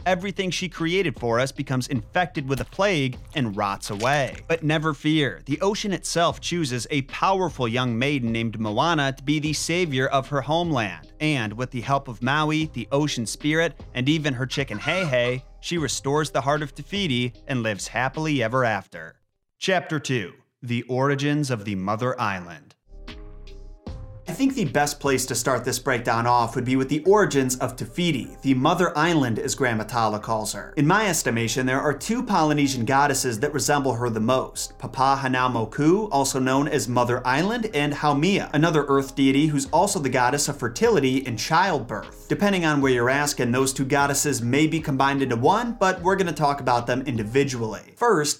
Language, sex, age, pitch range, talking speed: English, male, 30-49, 125-155 Hz, 180 wpm